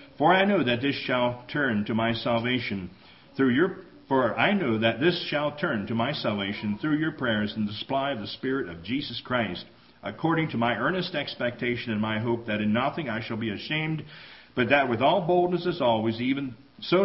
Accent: American